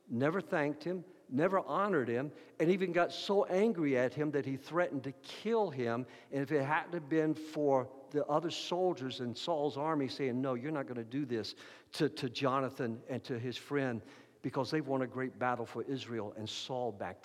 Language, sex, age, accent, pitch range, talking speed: English, male, 60-79, American, 150-215 Hz, 200 wpm